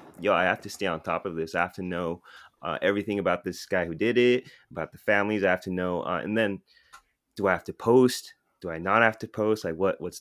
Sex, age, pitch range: male, 20-39, 85-105 Hz